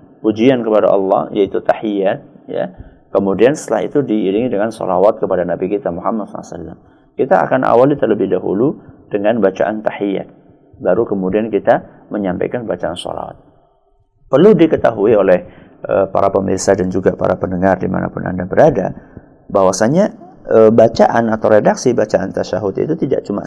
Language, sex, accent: Indonesian, male, native